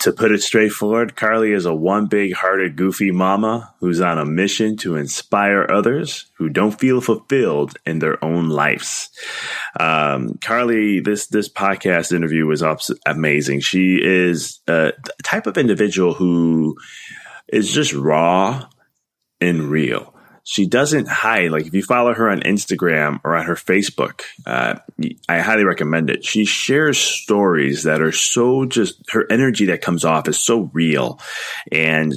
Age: 20-39